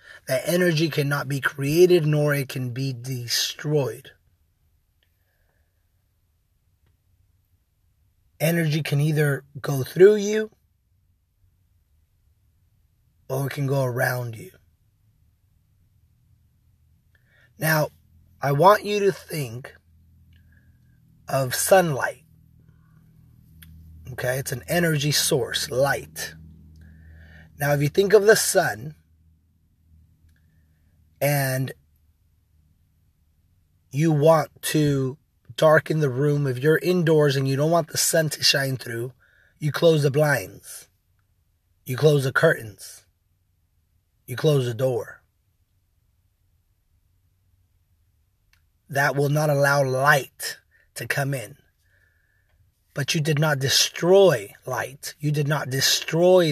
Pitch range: 90-145 Hz